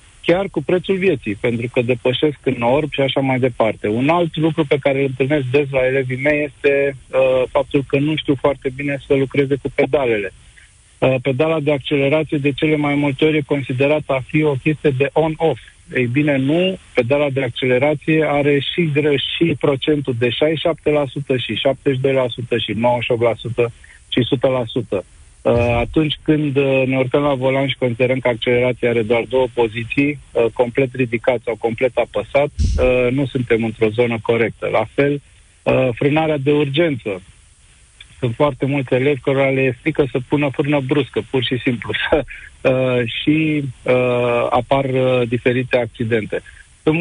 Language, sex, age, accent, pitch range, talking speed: Romanian, male, 50-69, native, 125-150 Hz, 160 wpm